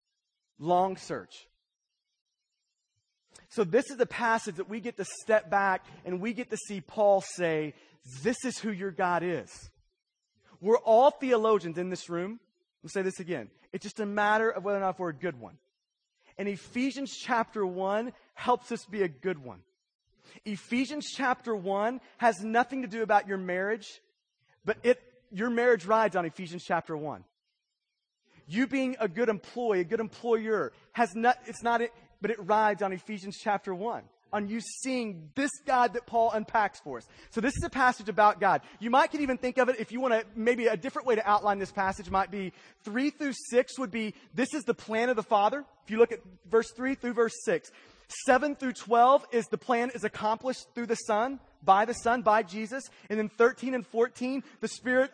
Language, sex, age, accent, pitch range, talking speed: English, male, 30-49, American, 195-245 Hz, 195 wpm